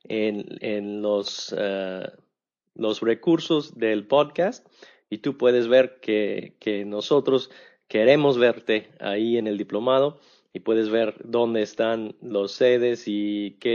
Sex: male